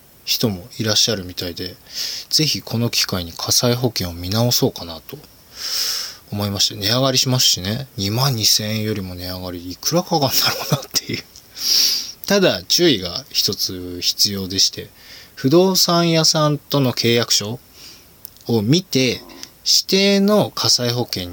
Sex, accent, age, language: male, native, 20-39, Japanese